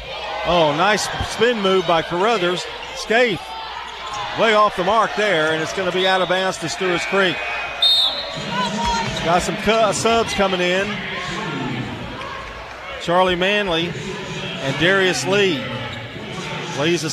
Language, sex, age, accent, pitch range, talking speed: English, male, 40-59, American, 155-195 Hz, 125 wpm